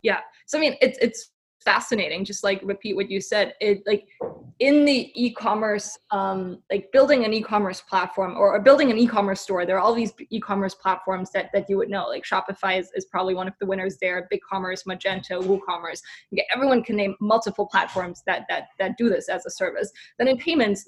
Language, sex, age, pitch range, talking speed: English, female, 20-39, 195-225 Hz, 205 wpm